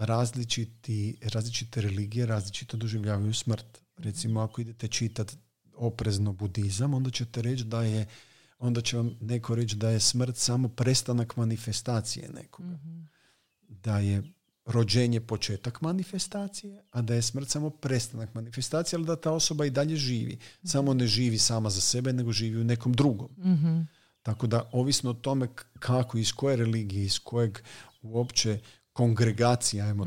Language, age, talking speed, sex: Croatian, 40-59, 145 wpm, male